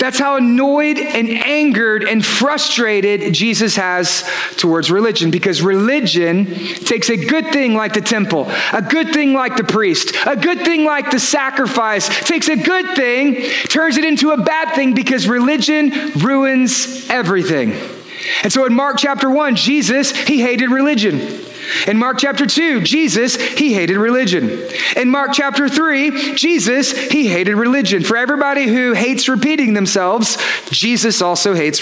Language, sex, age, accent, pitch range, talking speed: English, male, 30-49, American, 220-290 Hz, 155 wpm